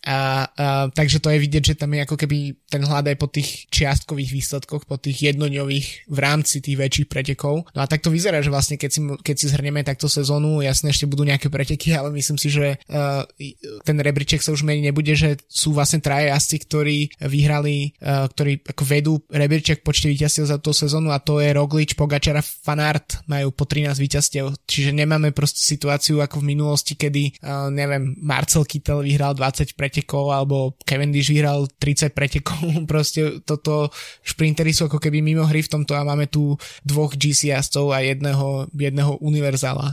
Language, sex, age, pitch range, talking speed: Slovak, male, 20-39, 140-150 Hz, 185 wpm